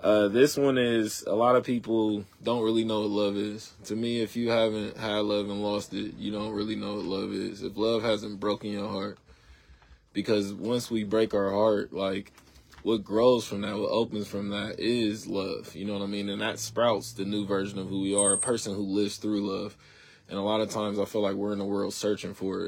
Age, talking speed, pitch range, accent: 20-39, 240 wpm, 100-110 Hz, American